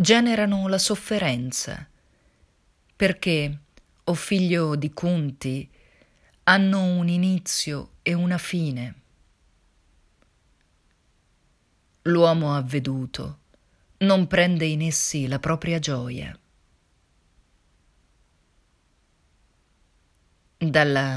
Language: Italian